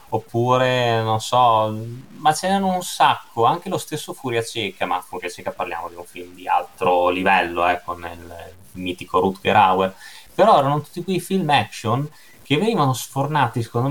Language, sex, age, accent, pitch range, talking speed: Italian, male, 20-39, native, 100-130 Hz, 170 wpm